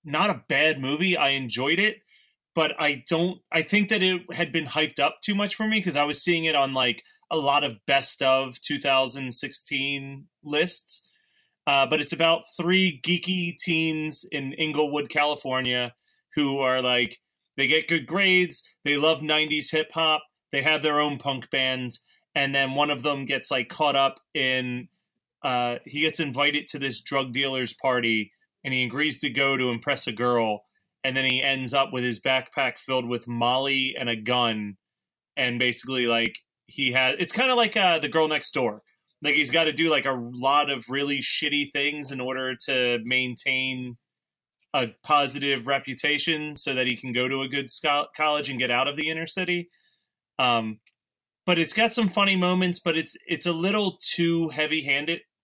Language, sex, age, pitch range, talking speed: English, male, 30-49, 130-165 Hz, 180 wpm